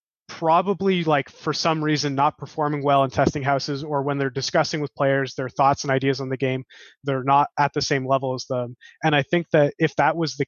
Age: 20-39